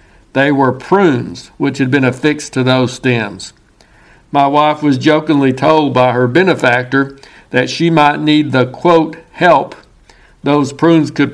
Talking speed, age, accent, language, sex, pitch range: 150 wpm, 60-79, American, English, male, 130-160 Hz